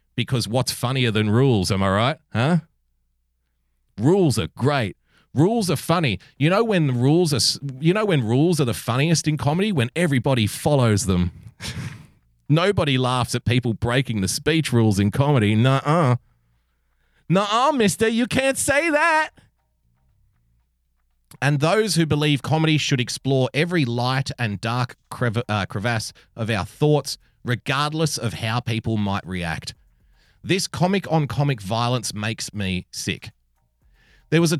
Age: 30-49